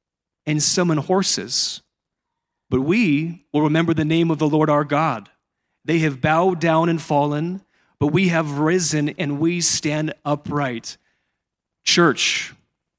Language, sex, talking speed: English, male, 135 wpm